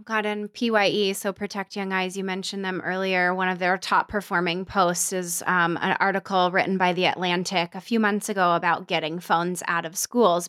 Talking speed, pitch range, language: 200 wpm, 190-220 Hz, English